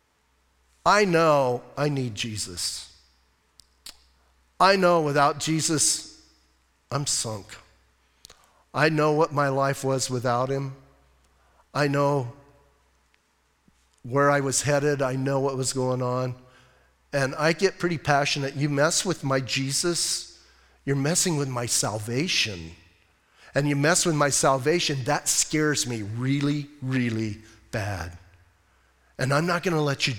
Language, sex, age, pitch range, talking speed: English, male, 50-69, 110-175 Hz, 130 wpm